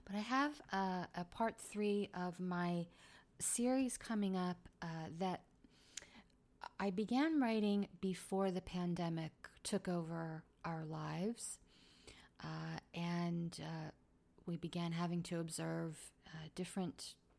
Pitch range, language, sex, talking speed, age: 165-195 Hz, English, female, 115 wpm, 30-49